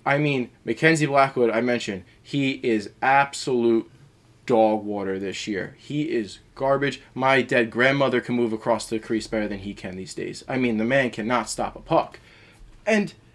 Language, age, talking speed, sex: English, 20-39, 175 wpm, male